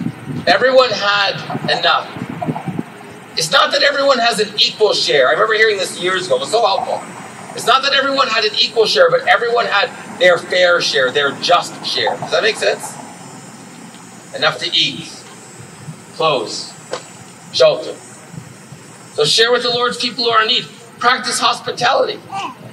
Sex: male